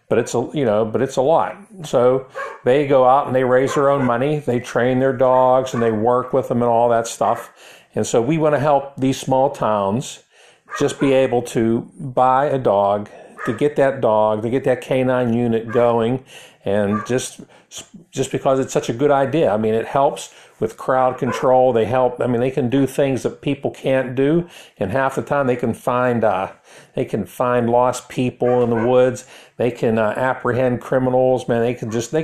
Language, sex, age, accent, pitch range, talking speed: English, male, 50-69, American, 115-135 Hz, 210 wpm